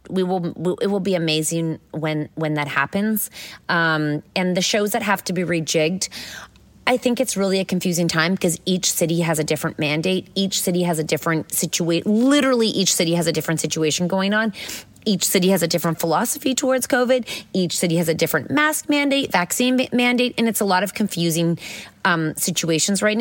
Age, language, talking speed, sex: 30-49, English, 195 wpm, female